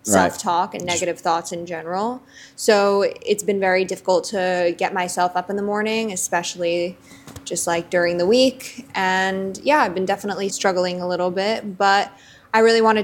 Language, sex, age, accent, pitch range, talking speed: English, female, 20-39, American, 180-200 Hz, 175 wpm